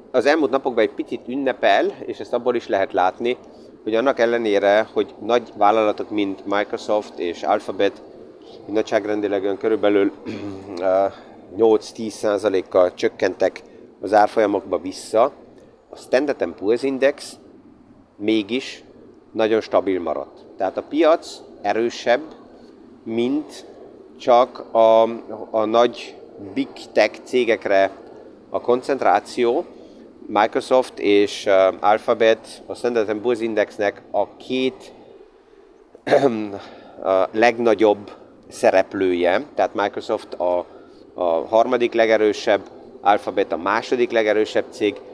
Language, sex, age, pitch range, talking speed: Hungarian, male, 30-49, 100-120 Hz, 95 wpm